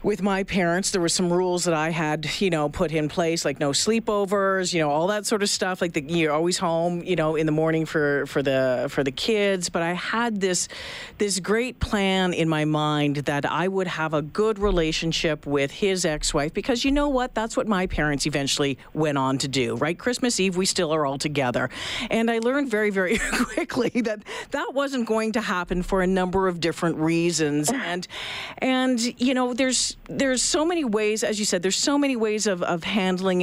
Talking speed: 215 wpm